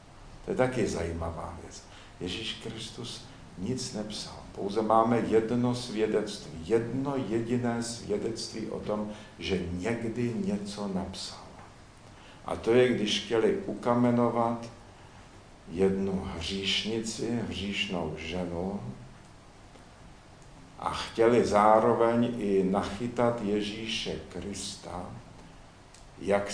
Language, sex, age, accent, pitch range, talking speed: Czech, male, 50-69, native, 95-115 Hz, 90 wpm